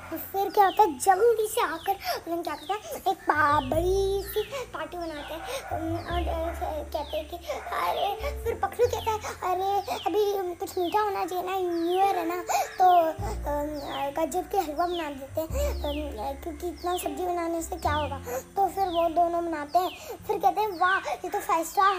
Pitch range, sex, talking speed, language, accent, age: 300-370 Hz, male, 175 wpm, Hindi, native, 20-39